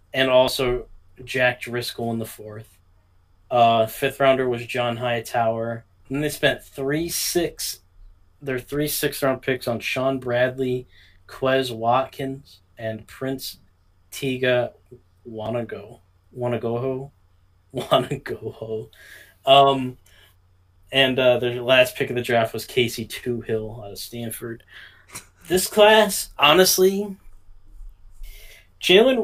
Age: 20-39